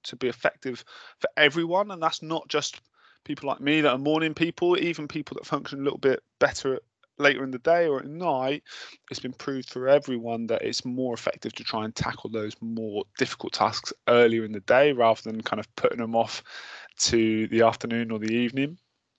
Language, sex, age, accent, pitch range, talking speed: English, male, 20-39, British, 115-145 Hz, 205 wpm